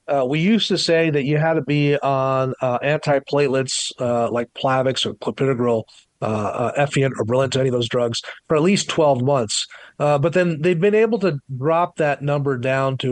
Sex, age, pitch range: male, 40-59, 130-160 Hz